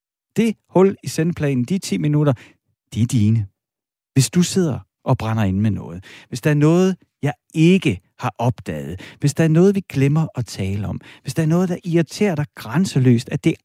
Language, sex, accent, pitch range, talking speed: Danish, male, native, 115-165 Hz, 200 wpm